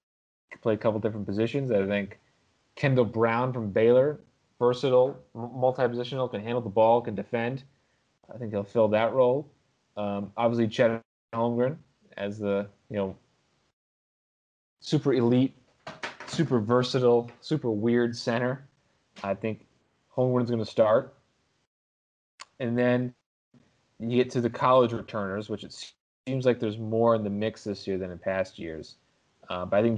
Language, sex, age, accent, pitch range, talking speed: English, male, 20-39, American, 110-125 Hz, 145 wpm